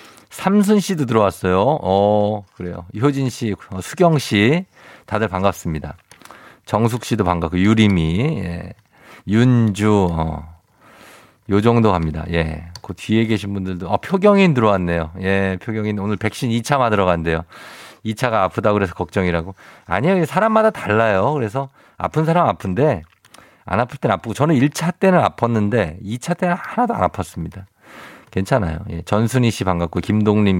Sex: male